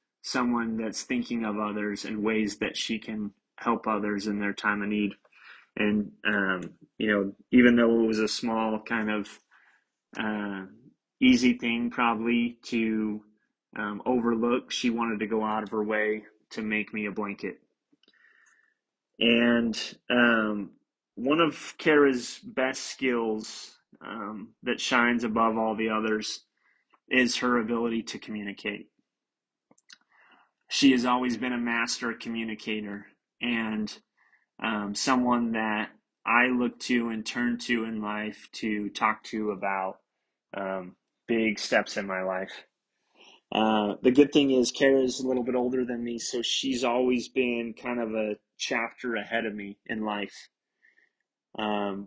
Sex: male